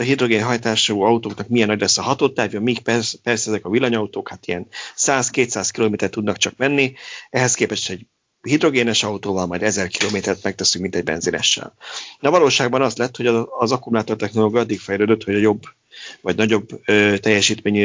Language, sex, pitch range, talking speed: Hungarian, male, 100-120 Hz, 160 wpm